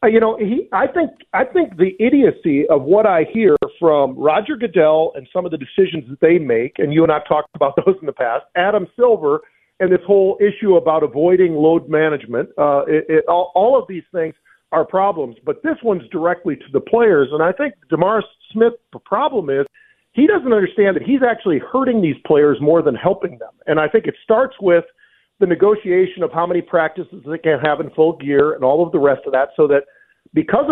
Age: 50-69